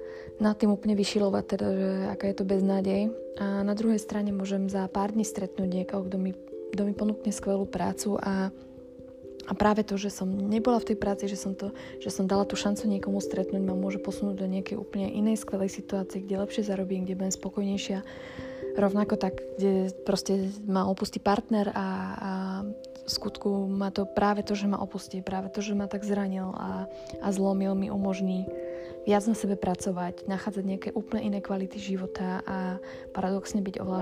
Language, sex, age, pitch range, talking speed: Slovak, female, 20-39, 190-210 Hz, 180 wpm